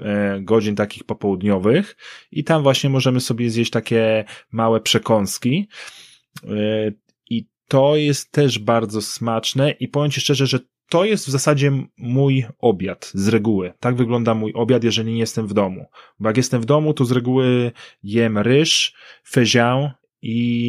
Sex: male